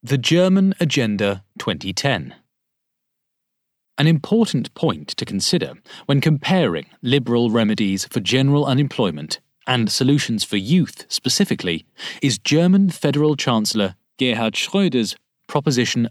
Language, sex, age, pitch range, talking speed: English, male, 30-49, 110-155 Hz, 105 wpm